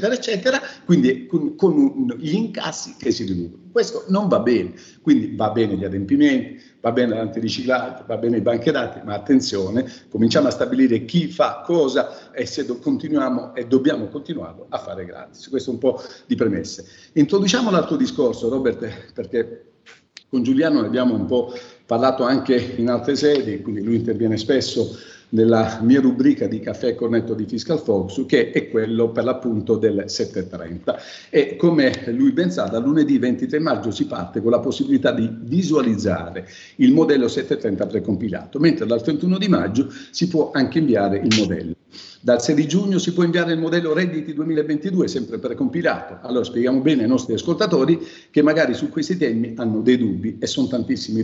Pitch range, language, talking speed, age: 115-185 Hz, Italian, 170 wpm, 50-69